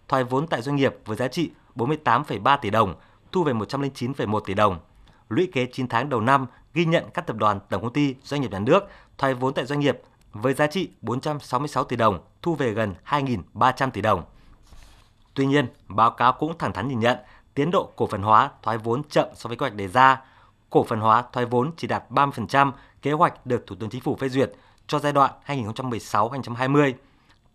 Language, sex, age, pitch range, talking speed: Vietnamese, male, 20-39, 110-145 Hz, 205 wpm